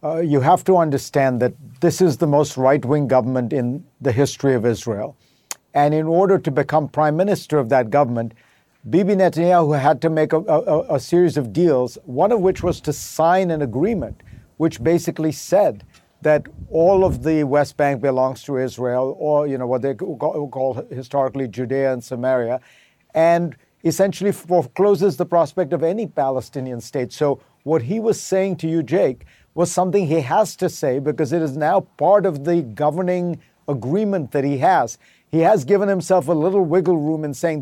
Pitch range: 140-175 Hz